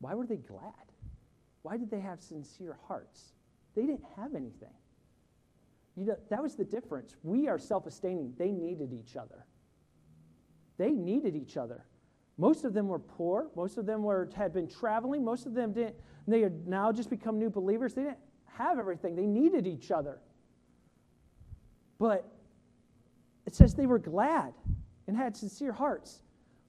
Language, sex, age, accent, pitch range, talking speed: English, male, 40-59, American, 200-280 Hz, 165 wpm